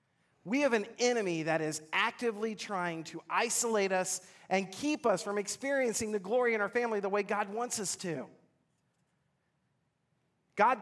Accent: American